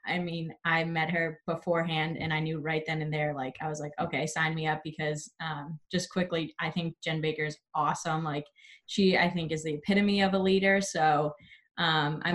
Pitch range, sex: 155-190 Hz, female